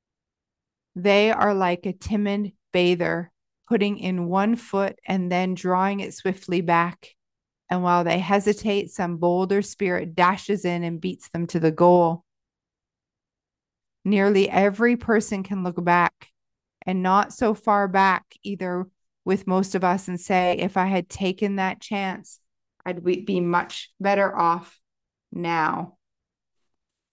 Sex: female